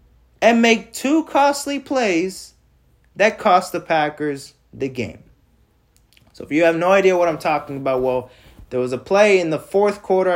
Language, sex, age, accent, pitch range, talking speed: English, male, 20-39, American, 120-185 Hz, 175 wpm